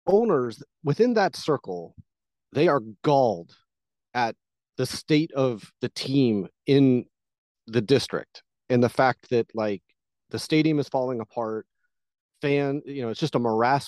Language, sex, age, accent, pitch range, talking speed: English, male, 30-49, American, 120-150 Hz, 145 wpm